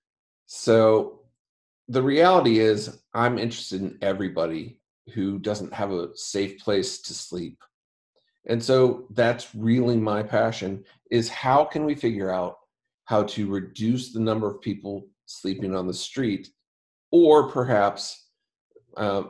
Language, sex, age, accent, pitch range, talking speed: English, male, 40-59, American, 100-125 Hz, 130 wpm